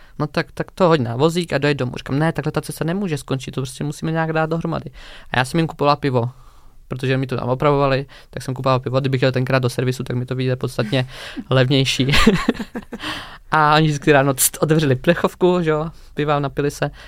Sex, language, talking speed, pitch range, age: male, Czech, 210 wpm, 130-150 Hz, 20-39